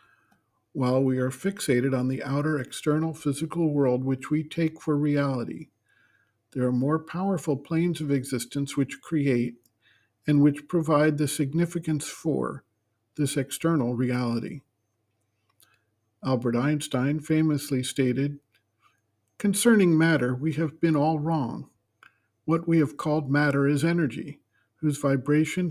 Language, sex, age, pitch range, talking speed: English, male, 50-69, 120-150 Hz, 125 wpm